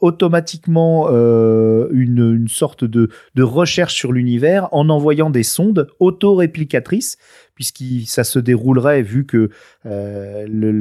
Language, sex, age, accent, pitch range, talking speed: French, male, 40-59, French, 110-150 Hz, 120 wpm